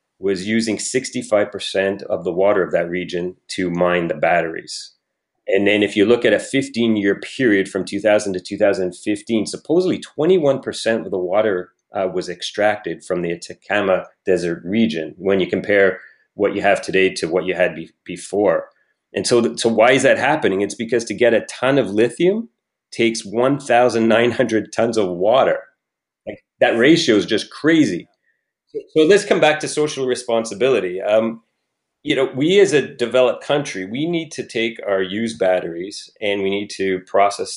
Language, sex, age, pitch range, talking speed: English, male, 30-49, 95-115 Hz, 165 wpm